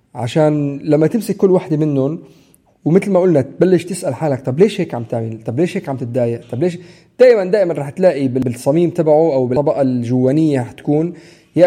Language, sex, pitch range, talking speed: Arabic, male, 125-170 Hz, 180 wpm